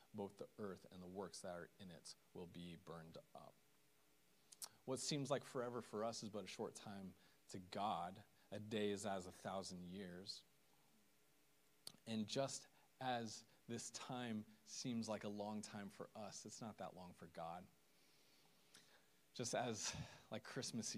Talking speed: 160 wpm